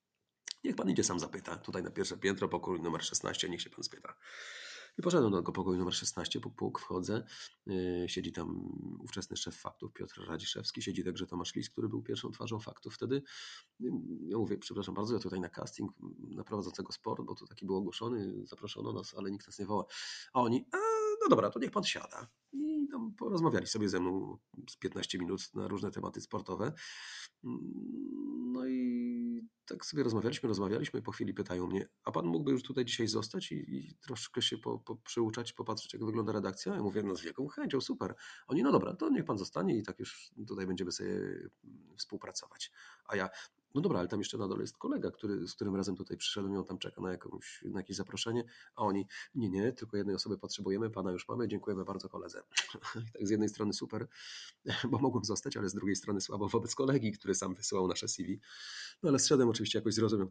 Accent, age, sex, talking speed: native, 40-59, male, 205 wpm